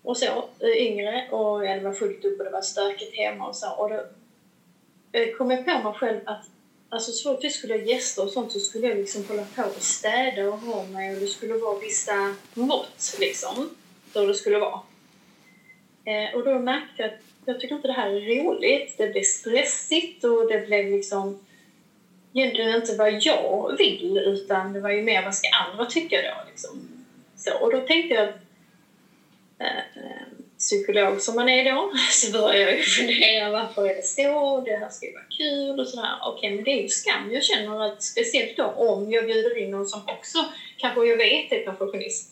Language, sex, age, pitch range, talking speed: Swedish, female, 30-49, 200-275 Hz, 195 wpm